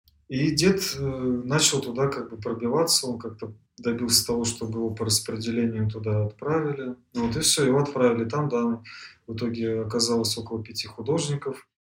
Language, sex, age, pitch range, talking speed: Russian, male, 20-39, 110-125 Hz, 150 wpm